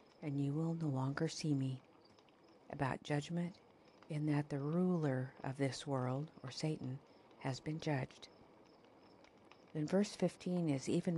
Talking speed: 140 wpm